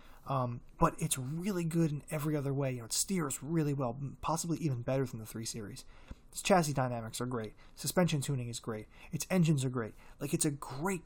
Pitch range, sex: 125-165 Hz, male